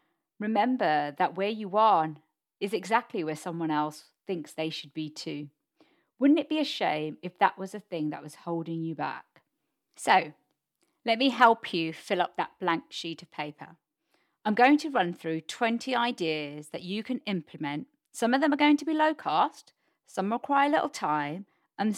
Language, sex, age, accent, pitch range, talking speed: English, female, 40-59, British, 160-260 Hz, 185 wpm